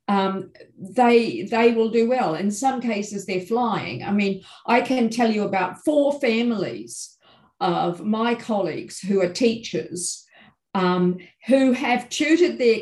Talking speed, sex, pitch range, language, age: 145 wpm, female, 185-245 Hz, English, 50-69